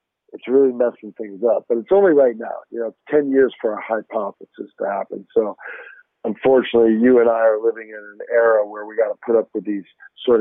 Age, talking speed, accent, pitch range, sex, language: 50-69, 225 wpm, American, 115-130 Hz, male, English